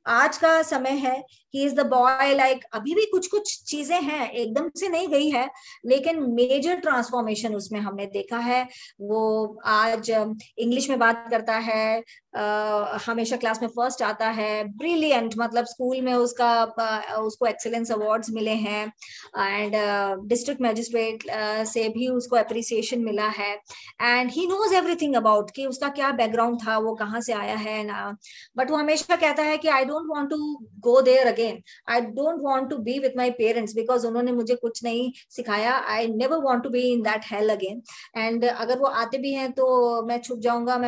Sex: male